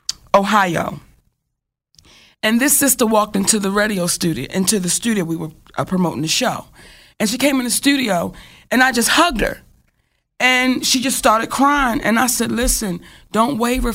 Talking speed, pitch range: 170 wpm, 220-265 Hz